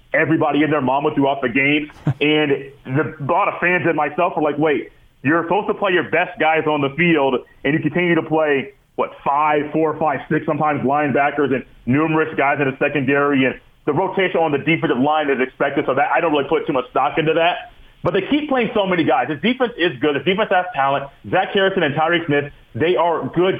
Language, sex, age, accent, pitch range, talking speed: English, male, 30-49, American, 150-185 Hz, 220 wpm